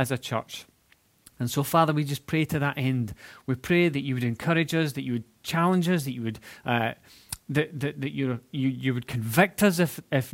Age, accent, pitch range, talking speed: 30-49, British, 120-155 Hz, 225 wpm